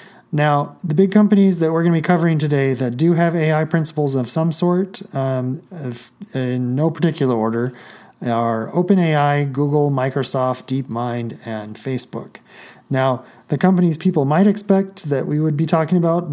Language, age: English, 30-49